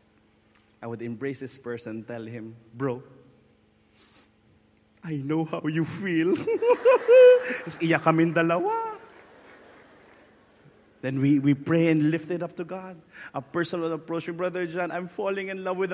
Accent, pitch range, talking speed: Filipino, 105-180 Hz, 135 wpm